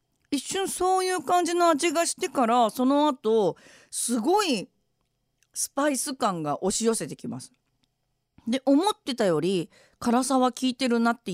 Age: 40-59